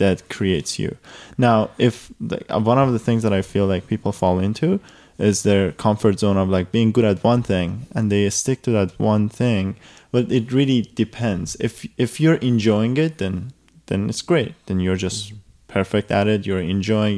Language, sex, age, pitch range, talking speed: English, male, 20-39, 100-125 Hz, 195 wpm